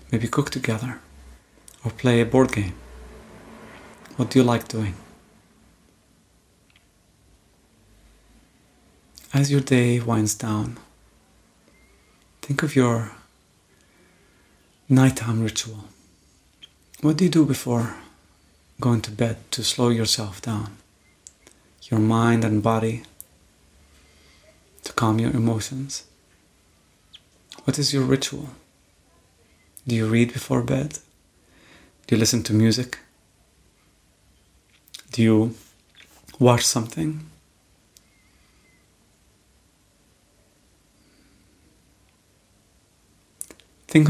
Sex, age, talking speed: male, 30-49, 85 wpm